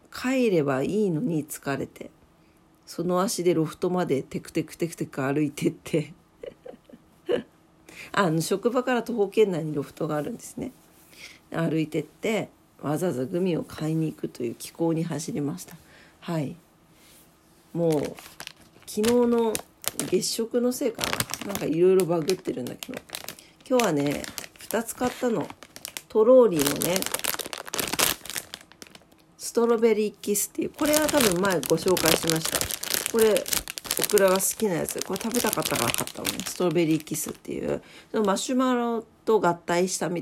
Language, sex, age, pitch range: Japanese, female, 40-59, 155-230 Hz